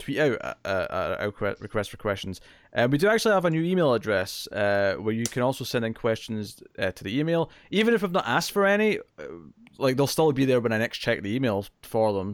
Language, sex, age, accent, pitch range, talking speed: English, male, 20-39, British, 105-140 Hz, 245 wpm